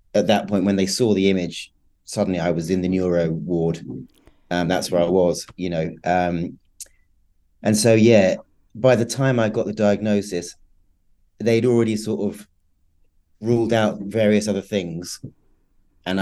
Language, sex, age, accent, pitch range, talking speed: English, male, 30-49, British, 90-105 Hz, 160 wpm